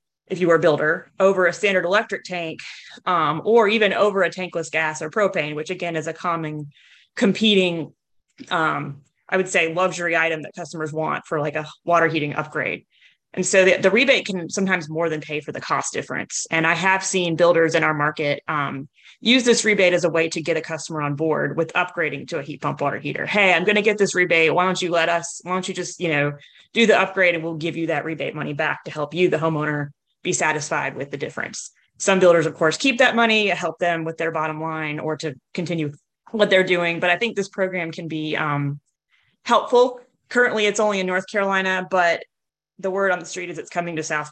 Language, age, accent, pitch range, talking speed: English, 20-39, American, 160-190 Hz, 225 wpm